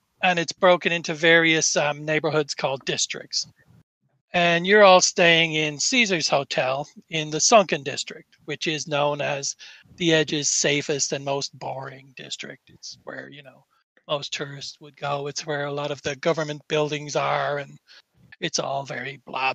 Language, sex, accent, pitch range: English, male, American, 145-165 Hz